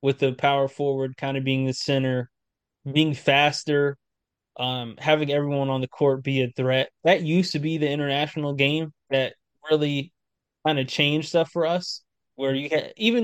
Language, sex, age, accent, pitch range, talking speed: English, male, 20-39, American, 135-155 Hz, 175 wpm